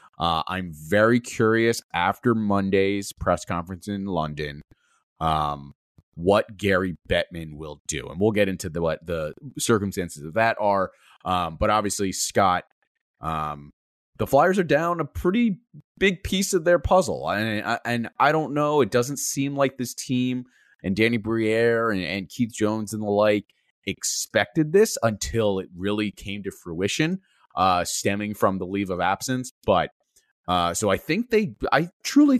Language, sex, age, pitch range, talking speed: English, male, 30-49, 90-120 Hz, 165 wpm